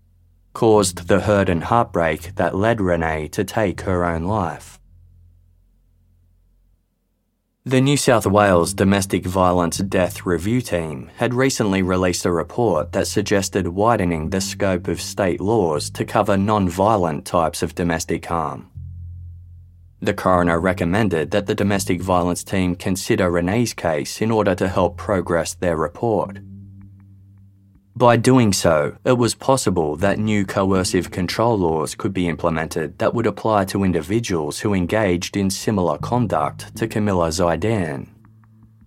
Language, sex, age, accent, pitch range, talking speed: English, male, 20-39, Australian, 85-110 Hz, 135 wpm